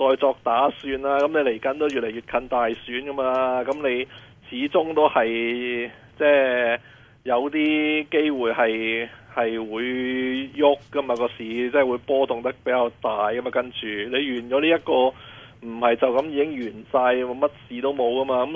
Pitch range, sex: 125-150 Hz, male